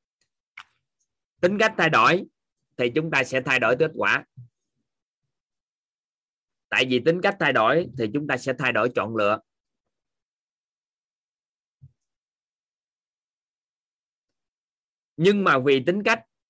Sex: male